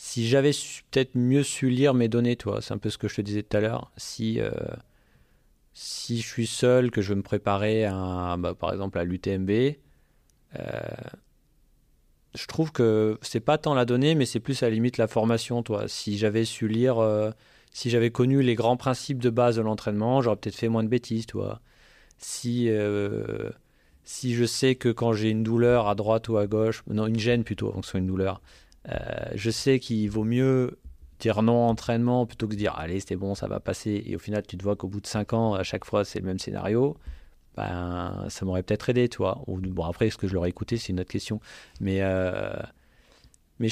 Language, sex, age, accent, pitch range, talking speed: French, male, 30-49, French, 100-120 Hz, 215 wpm